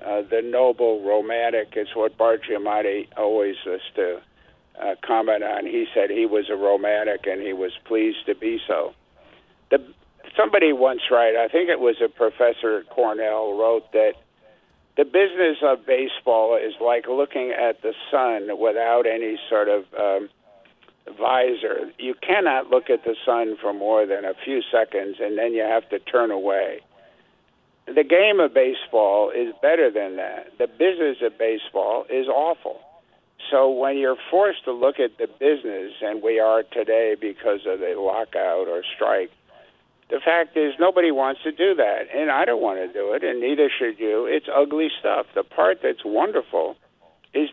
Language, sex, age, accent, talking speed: English, male, 50-69, American, 170 wpm